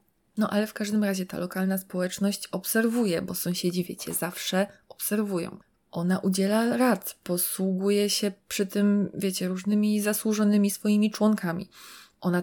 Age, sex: 20-39, female